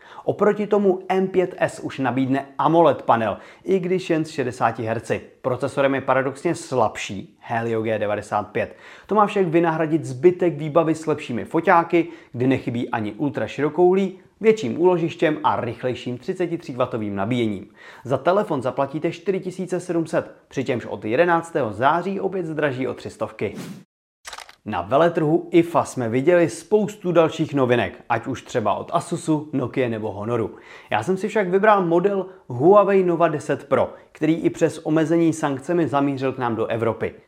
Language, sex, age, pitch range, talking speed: Czech, male, 30-49, 125-170 Hz, 140 wpm